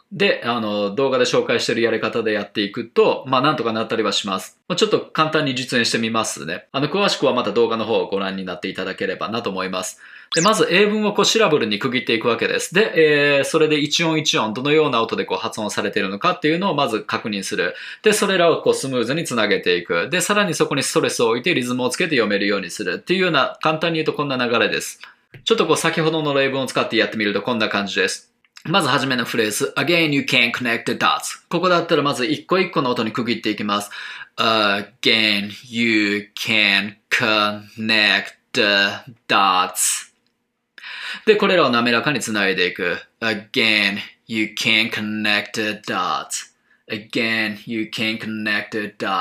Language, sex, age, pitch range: Japanese, male, 20-39, 110-160 Hz